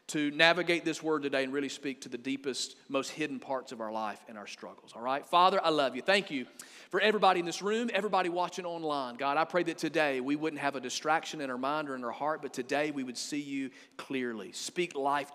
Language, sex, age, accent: English, male, 40-59, American